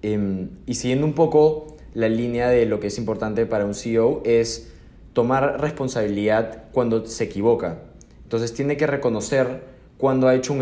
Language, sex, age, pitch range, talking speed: Spanish, male, 20-39, 115-135 Hz, 165 wpm